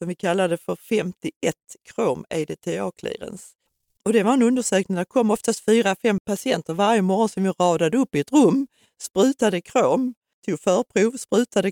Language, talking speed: Swedish, 170 wpm